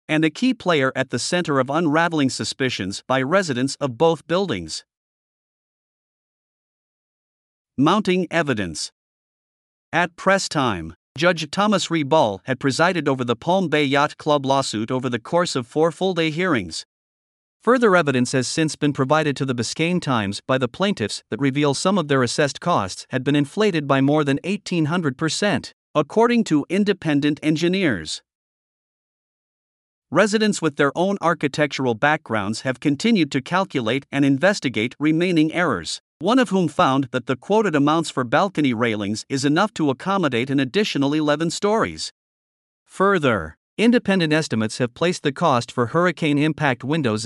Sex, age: male, 50-69